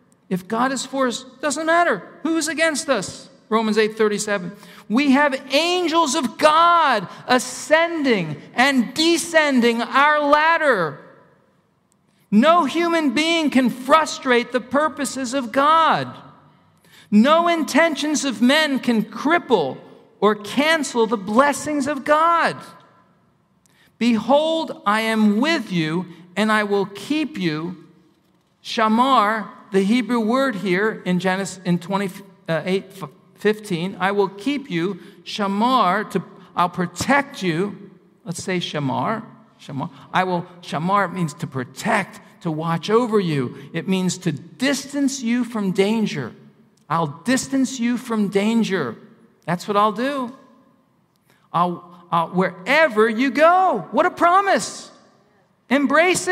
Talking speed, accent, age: 120 wpm, American, 50-69